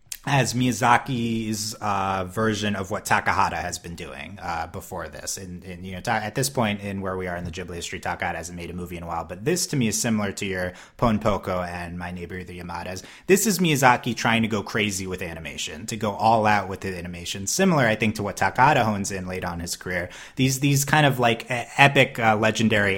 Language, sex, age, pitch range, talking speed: English, male, 30-49, 90-115 Hz, 225 wpm